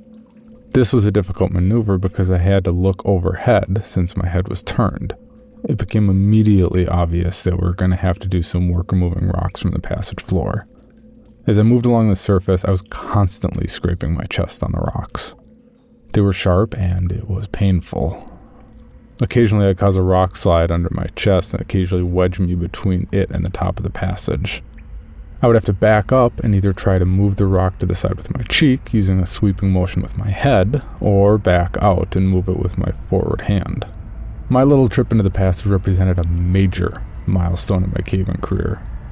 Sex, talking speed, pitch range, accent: male, 200 wpm, 90-105 Hz, American